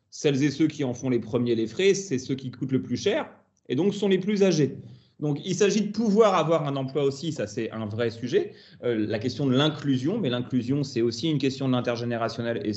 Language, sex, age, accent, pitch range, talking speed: French, male, 30-49, French, 120-150 Hz, 240 wpm